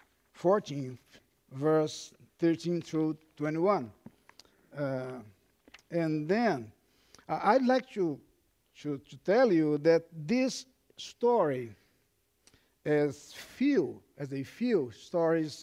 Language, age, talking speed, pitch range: English, 50-69, 90 wpm, 145-190 Hz